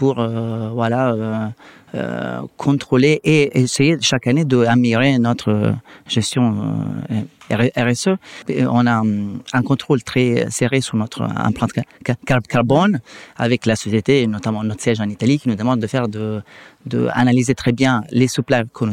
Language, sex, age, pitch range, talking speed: French, male, 30-49, 110-130 Hz, 160 wpm